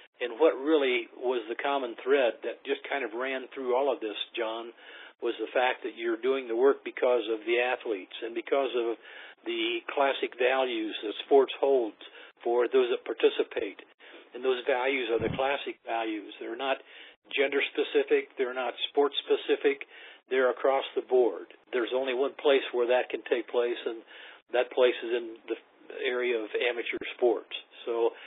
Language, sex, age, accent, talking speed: English, male, 50-69, American, 170 wpm